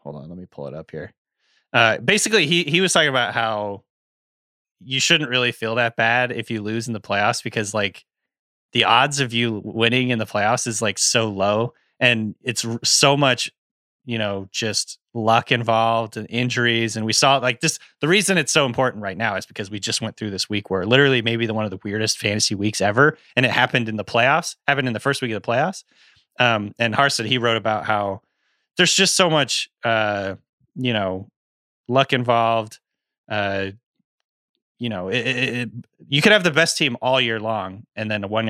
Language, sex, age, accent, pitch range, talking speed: English, male, 30-49, American, 110-125 Hz, 200 wpm